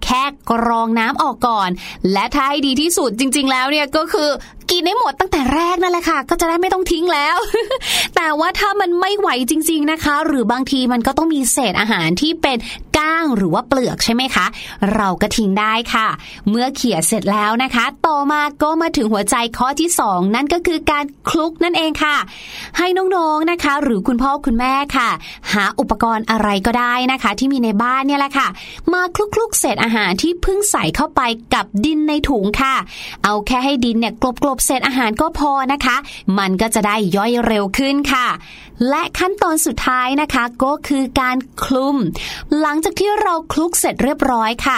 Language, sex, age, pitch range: Thai, female, 20-39, 225-310 Hz